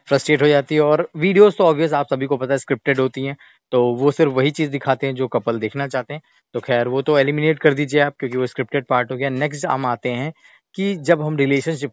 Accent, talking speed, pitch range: native, 250 wpm, 130-165 Hz